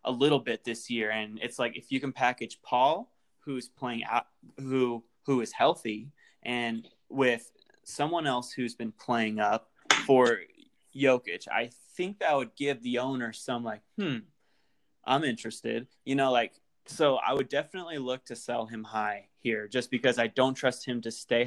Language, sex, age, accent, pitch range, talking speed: English, male, 20-39, American, 115-130 Hz, 175 wpm